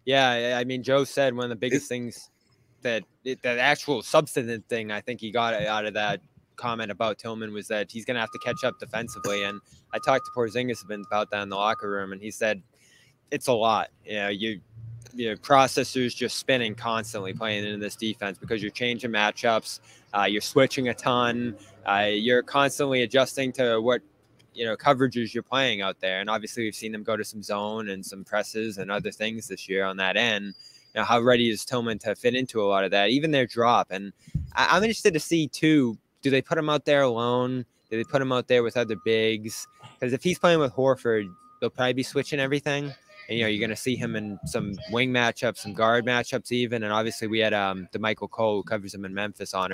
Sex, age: male, 20-39